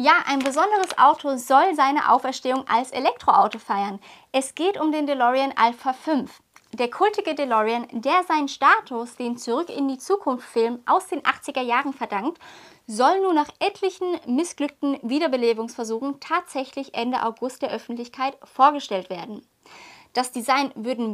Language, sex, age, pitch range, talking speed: German, female, 20-39, 240-310 Hz, 140 wpm